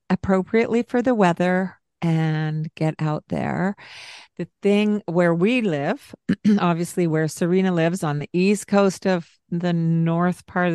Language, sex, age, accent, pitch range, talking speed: English, female, 50-69, American, 160-190 Hz, 140 wpm